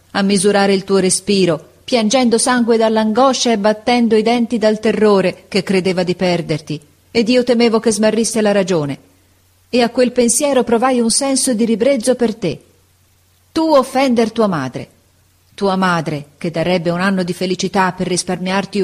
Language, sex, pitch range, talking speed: Italian, female, 165-220 Hz, 160 wpm